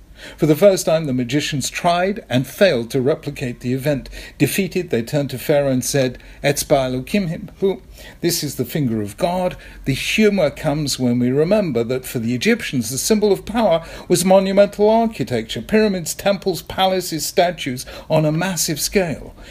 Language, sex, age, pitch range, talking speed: English, male, 50-69, 115-175 Hz, 165 wpm